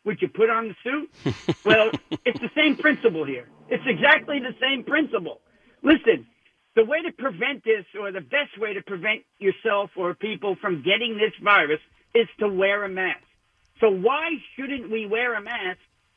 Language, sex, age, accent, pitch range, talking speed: English, male, 50-69, American, 200-280 Hz, 180 wpm